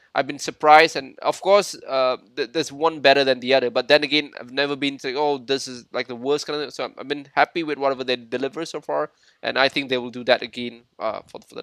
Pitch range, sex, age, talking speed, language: 130-165 Hz, male, 20-39, 275 wpm, Malay